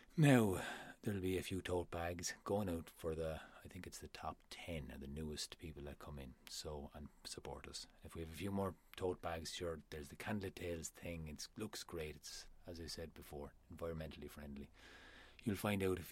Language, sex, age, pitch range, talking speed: English, male, 30-49, 75-95 Hz, 210 wpm